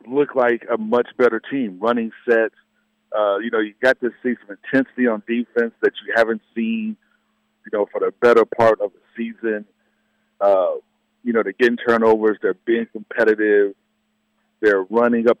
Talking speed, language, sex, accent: 170 wpm, English, male, American